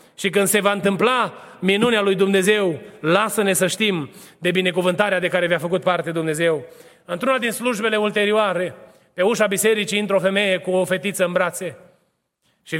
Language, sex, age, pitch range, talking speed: Romanian, male, 30-49, 210-255 Hz, 165 wpm